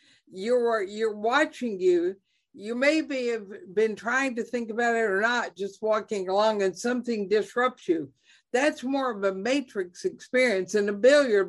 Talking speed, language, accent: 160 wpm, English, American